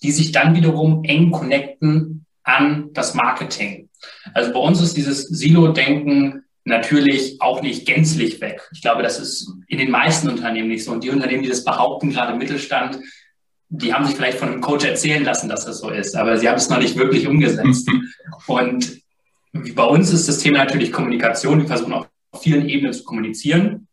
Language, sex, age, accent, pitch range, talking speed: German, male, 20-39, German, 130-160 Hz, 185 wpm